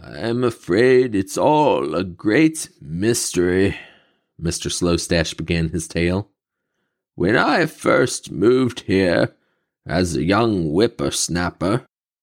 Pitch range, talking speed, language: 90-115 Hz, 110 wpm, English